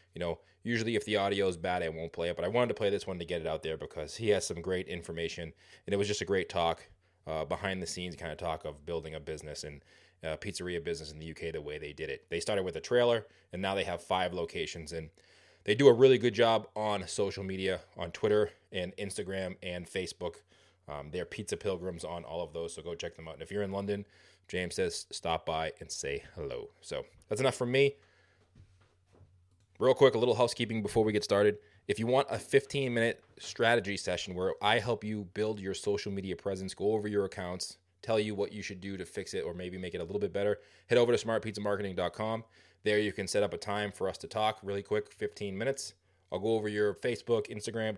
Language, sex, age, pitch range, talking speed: English, male, 20-39, 90-110 Hz, 235 wpm